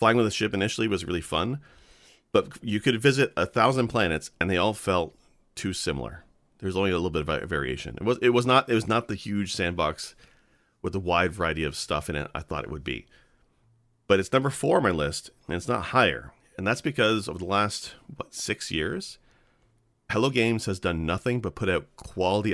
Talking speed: 215 wpm